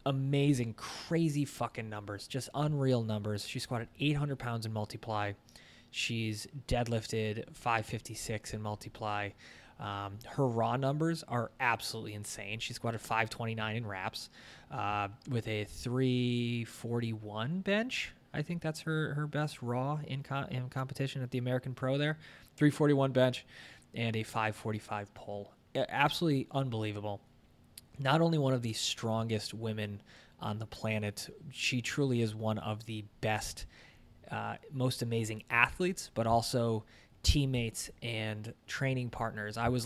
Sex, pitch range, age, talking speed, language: male, 110-130 Hz, 20-39, 130 wpm, English